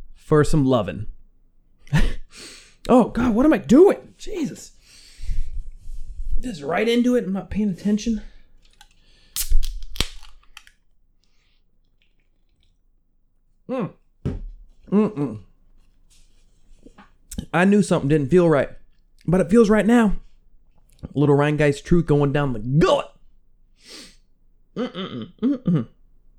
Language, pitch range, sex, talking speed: English, 130-200 Hz, male, 95 wpm